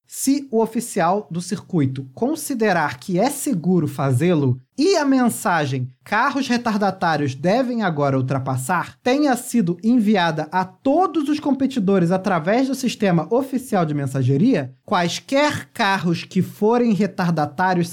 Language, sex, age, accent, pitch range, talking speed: Portuguese, male, 20-39, Brazilian, 165-245 Hz, 120 wpm